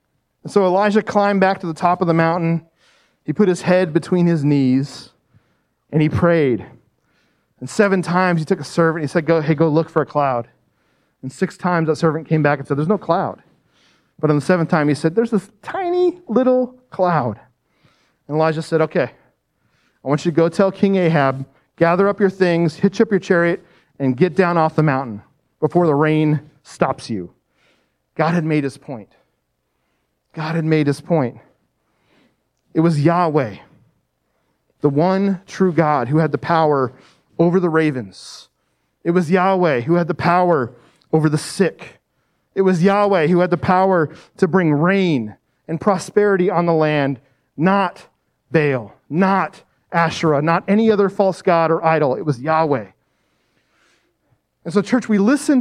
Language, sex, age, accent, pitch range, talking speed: English, male, 40-59, American, 150-190 Hz, 175 wpm